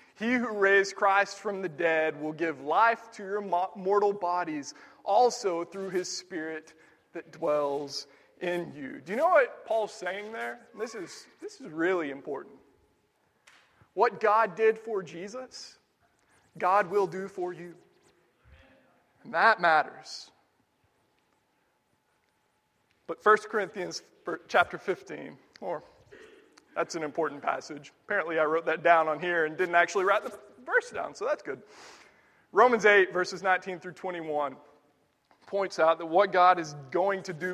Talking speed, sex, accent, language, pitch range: 145 wpm, male, American, English, 165-205 Hz